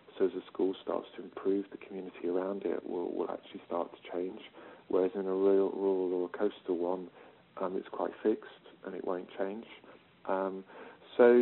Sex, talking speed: male, 180 wpm